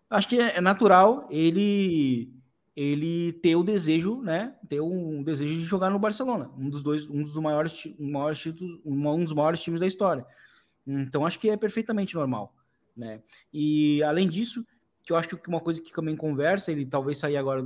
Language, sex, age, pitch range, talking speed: Portuguese, male, 20-39, 130-175 Hz, 175 wpm